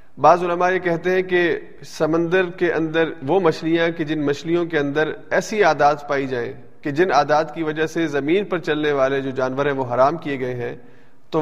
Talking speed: 205 wpm